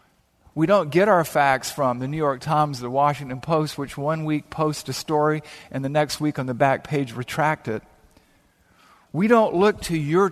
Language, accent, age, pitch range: English, American, 50-69, 135-175 Hz